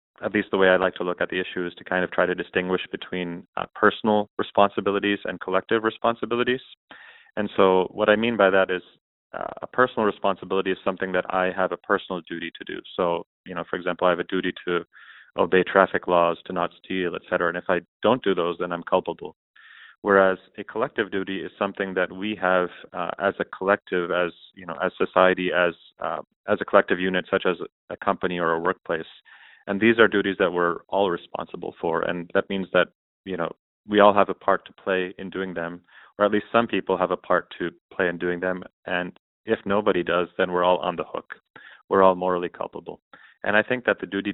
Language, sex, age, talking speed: English, male, 30-49, 220 wpm